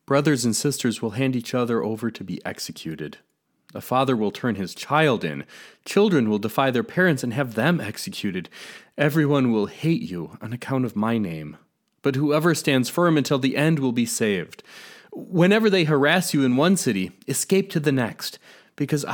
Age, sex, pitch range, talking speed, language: 30-49, male, 115-155 Hz, 180 wpm, English